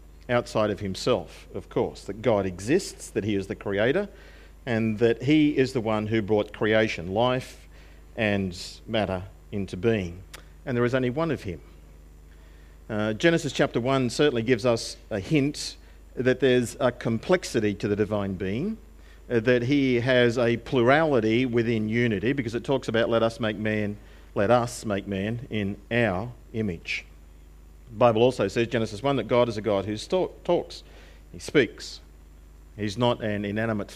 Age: 50-69